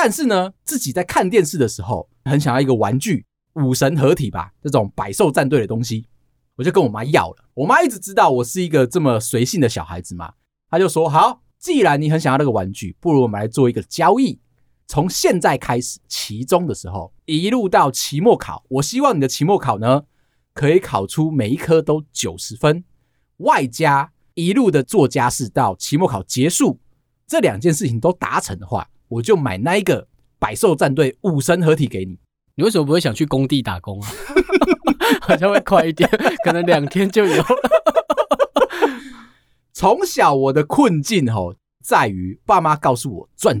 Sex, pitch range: male, 120-170 Hz